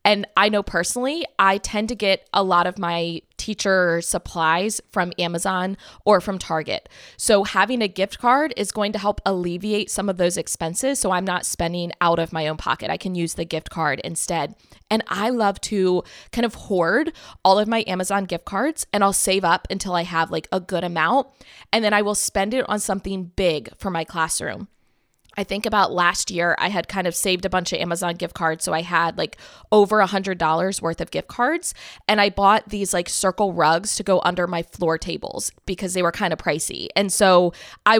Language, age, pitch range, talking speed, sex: English, 20-39, 175-210 Hz, 210 wpm, female